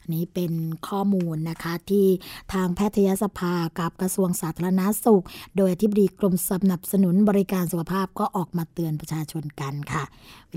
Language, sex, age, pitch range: Thai, female, 20-39, 175-220 Hz